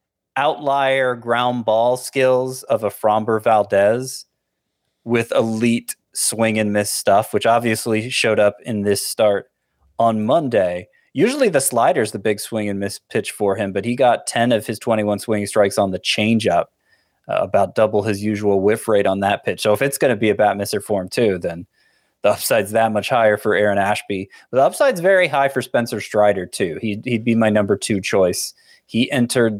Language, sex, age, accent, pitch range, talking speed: English, male, 20-39, American, 105-125 Hz, 190 wpm